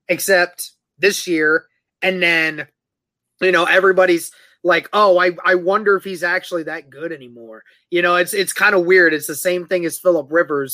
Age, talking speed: 20-39, 185 wpm